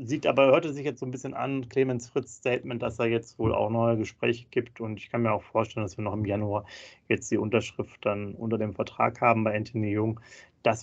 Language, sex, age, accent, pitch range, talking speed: German, male, 30-49, German, 110-125 Hz, 245 wpm